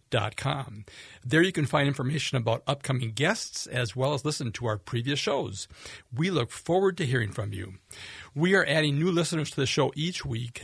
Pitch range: 120-155 Hz